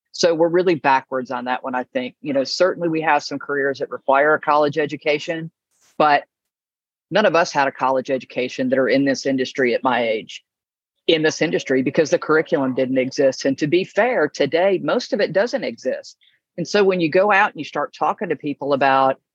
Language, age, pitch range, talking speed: English, 50-69, 140-170 Hz, 210 wpm